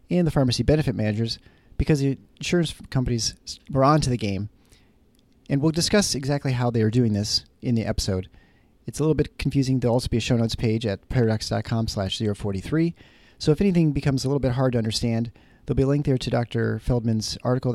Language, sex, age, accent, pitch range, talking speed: English, male, 40-59, American, 110-140 Hz, 205 wpm